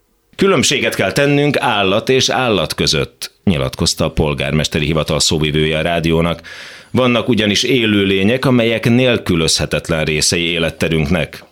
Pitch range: 75-110 Hz